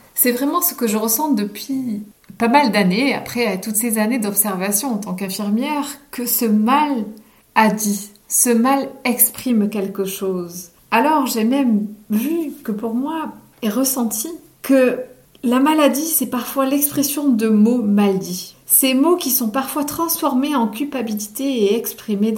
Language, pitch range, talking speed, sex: French, 210-275 Hz, 150 wpm, female